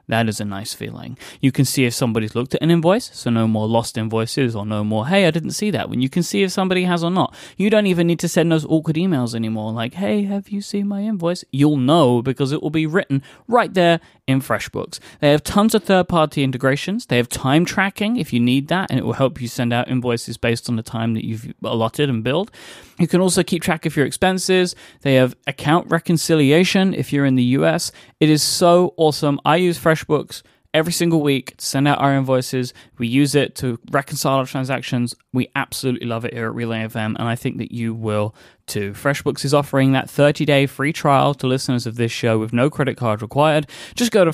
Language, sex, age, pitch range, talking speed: English, male, 20-39, 120-170 Hz, 230 wpm